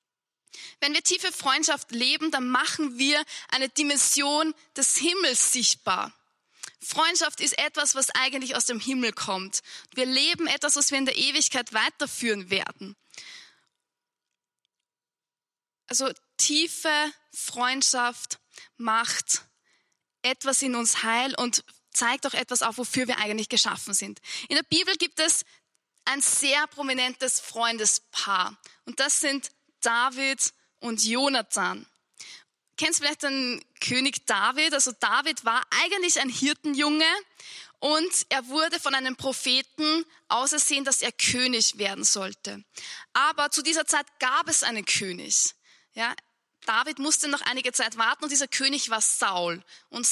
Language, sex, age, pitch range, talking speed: German, female, 10-29, 245-305 Hz, 135 wpm